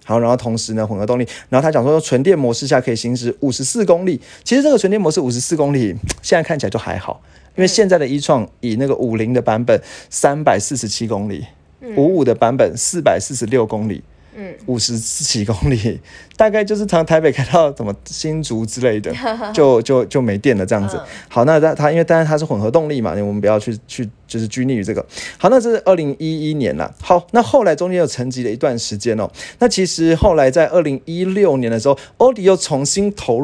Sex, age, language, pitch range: male, 20-39, Chinese, 120-170 Hz